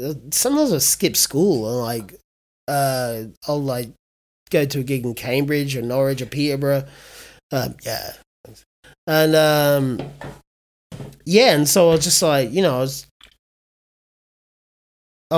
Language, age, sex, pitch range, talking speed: English, 30-49, male, 125-160 Hz, 135 wpm